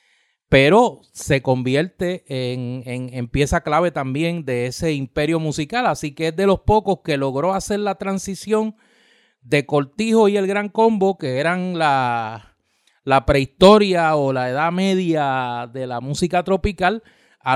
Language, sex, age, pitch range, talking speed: Spanish, male, 30-49, 130-180 Hz, 145 wpm